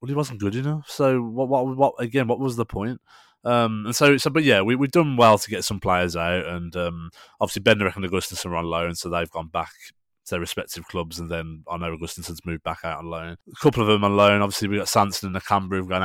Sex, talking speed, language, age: male, 265 wpm, English, 20-39